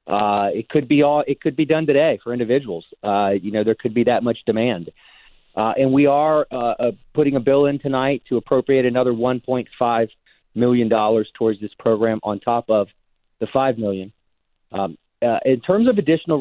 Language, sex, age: English, male, 40-59